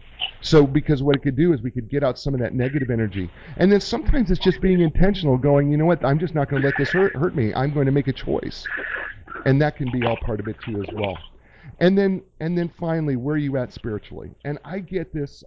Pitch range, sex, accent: 120-175 Hz, male, American